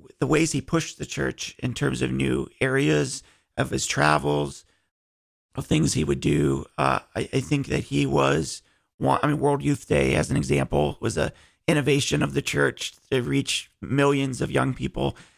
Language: English